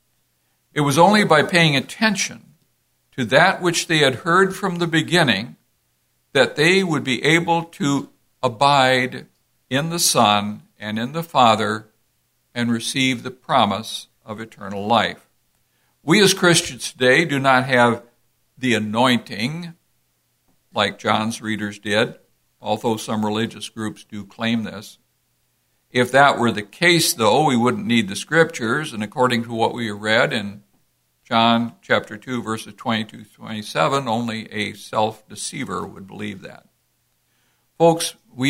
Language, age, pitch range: English, 60-79, 110-155 Hz